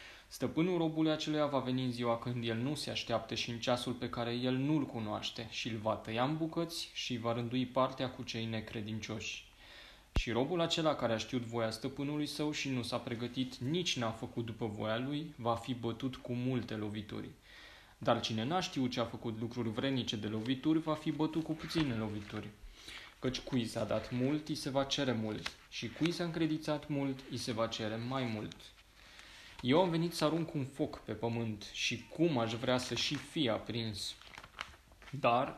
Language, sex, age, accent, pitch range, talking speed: Romanian, male, 20-39, native, 115-140 Hz, 190 wpm